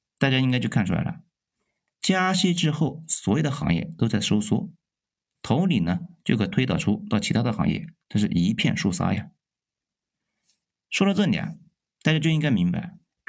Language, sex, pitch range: Chinese, male, 125-185 Hz